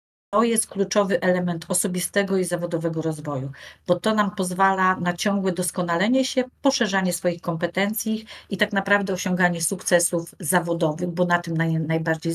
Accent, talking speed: native, 135 wpm